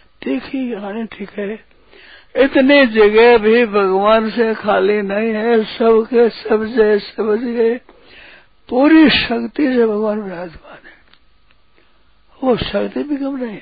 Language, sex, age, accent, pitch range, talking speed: Hindi, male, 60-79, native, 205-245 Hz, 125 wpm